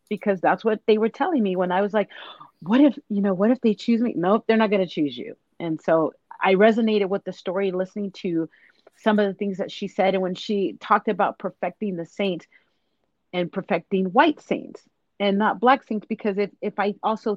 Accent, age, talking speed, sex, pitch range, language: American, 30-49, 220 wpm, female, 185-220 Hz, English